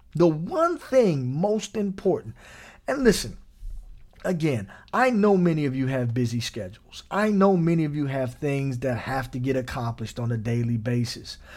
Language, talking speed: English, 165 wpm